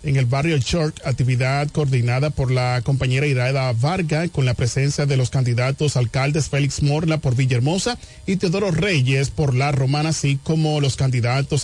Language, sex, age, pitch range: Spanish, male, 40-59, 135-170 Hz